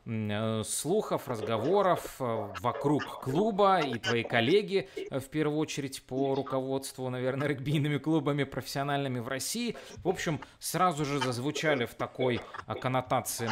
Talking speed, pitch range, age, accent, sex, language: 115 wpm, 115-150 Hz, 20-39, native, male, Russian